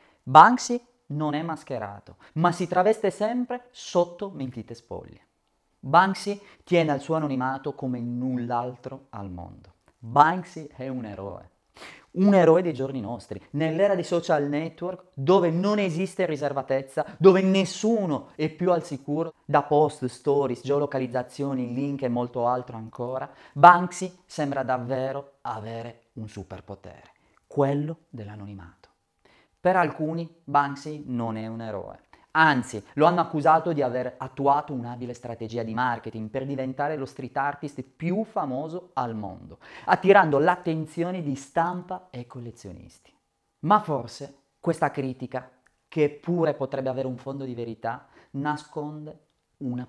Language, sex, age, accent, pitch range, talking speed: Italian, male, 30-49, native, 125-170 Hz, 130 wpm